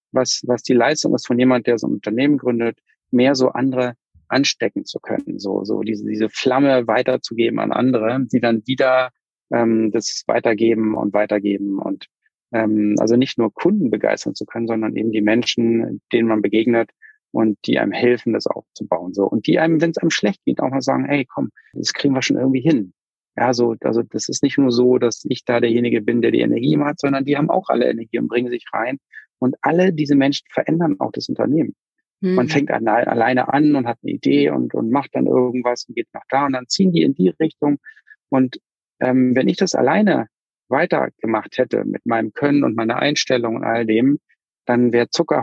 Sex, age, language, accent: male, 40-59, German, German